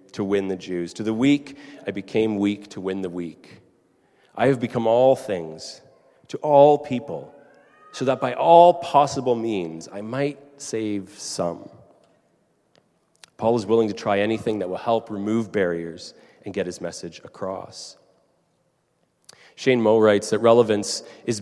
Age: 30-49